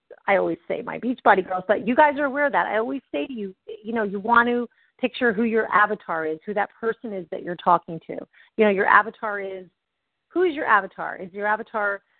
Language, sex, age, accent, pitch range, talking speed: English, female, 40-59, American, 205-255 Hz, 235 wpm